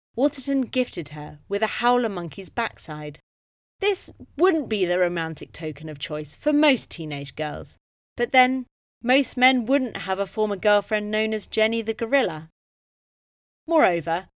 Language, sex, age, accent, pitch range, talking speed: English, female, 30-49, British, 160-245 Hz, 145 wpm